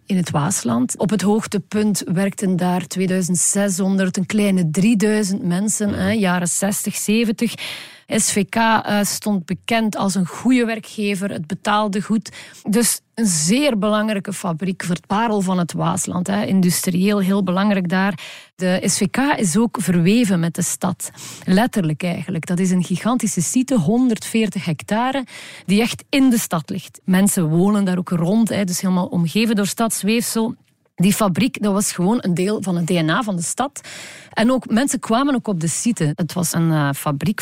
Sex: female